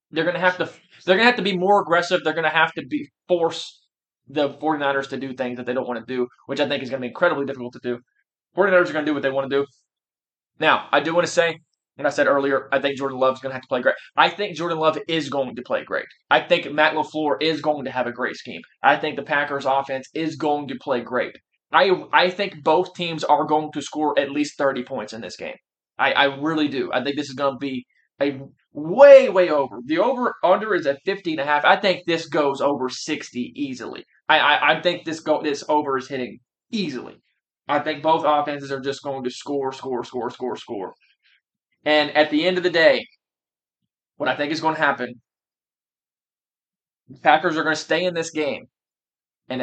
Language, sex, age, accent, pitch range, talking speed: English, male, 20-39, American, 140-165 Hz, 235 wpm